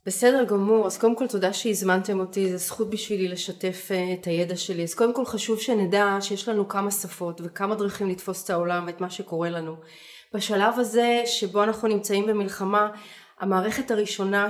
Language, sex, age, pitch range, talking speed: Hebrew, female, 30-49, 195-220 Hz, 170 wpm